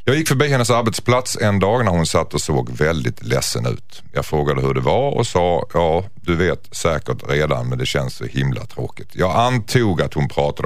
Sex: male